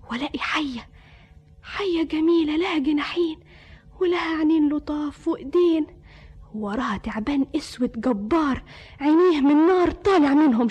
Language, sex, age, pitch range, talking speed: Arabic, female, 20-39, 245-335 Hz, 105 wpm